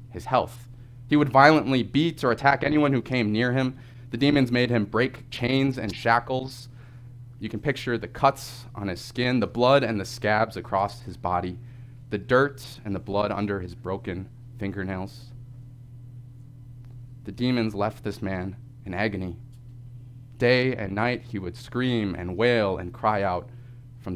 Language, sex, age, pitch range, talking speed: English, male, 20-39, 110-125 Hz, 160 wpm